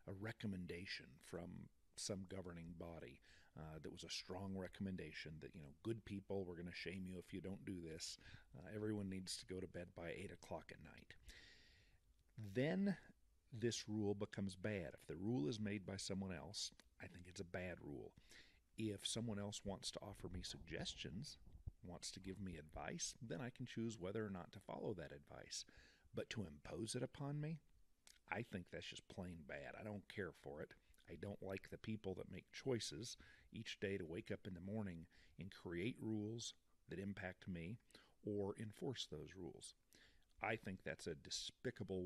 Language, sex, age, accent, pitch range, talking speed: English, male, 40-59, American, 90-110 Hz, 185 wpm